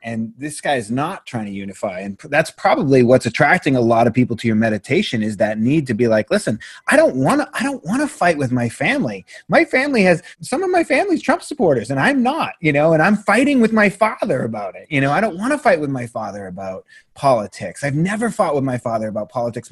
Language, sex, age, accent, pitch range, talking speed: English, male, 30-49, American, 125-180 Hz, 235 wpm